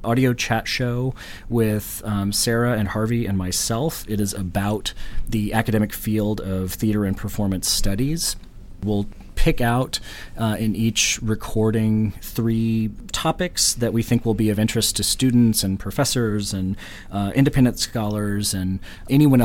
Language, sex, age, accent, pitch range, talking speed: English, male, 30-49, American, 100-115 Hz, 145 wpm